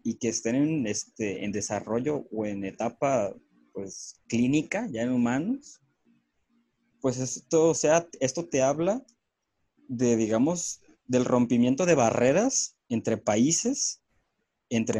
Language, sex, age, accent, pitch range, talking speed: Spanish, male, 20-39, Mexican, 115-145 Hz, 125 wpm